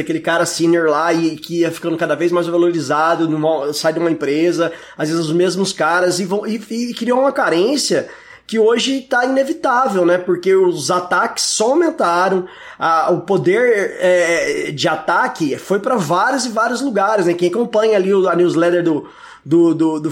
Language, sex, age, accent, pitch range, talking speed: Portuguese, male, 20-39, Brazilian, 165-220 Hz, 180 wpm